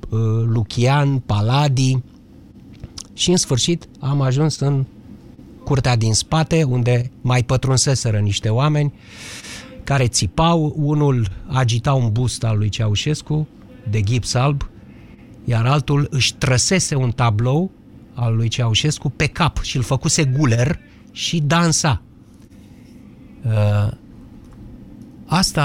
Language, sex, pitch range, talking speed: Romanian, male, 115-150 Hz, 110 wpm